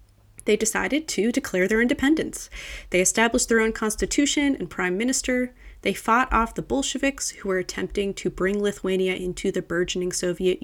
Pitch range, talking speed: 180-245 Hz, 165 wpm